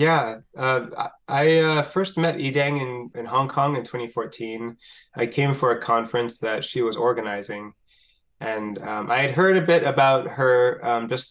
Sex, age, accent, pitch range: male, 20-39, American, 115-140 Hz